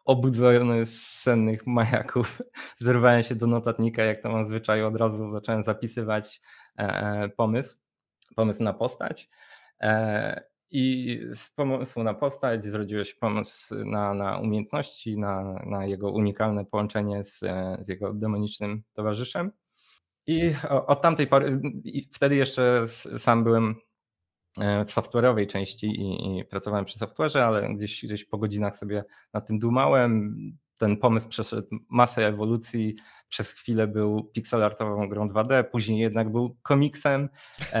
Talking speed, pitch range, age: 130 wpm, 105-125 Hz, 20-39